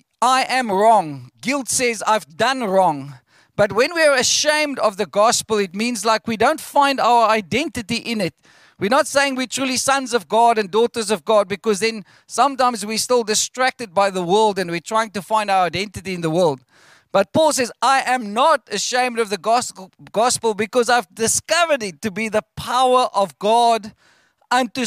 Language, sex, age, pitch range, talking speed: English, male, 40-59, 200-255 Hz, 190 wpm